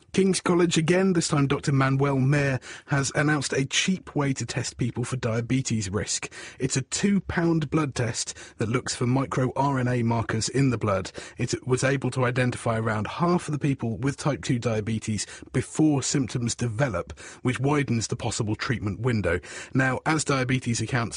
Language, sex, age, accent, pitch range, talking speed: English, male, 30-49, British, 115-150 Hz, 165 wpm